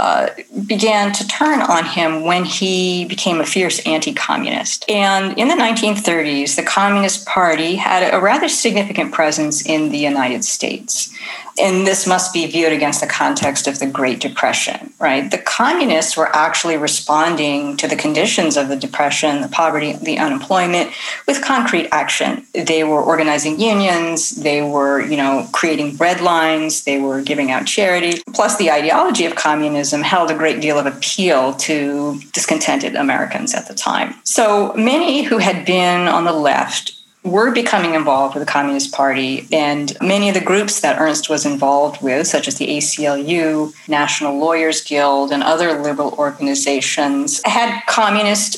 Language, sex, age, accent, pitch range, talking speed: English, female, 40-59, American, 150-195 Hz, 160 wpm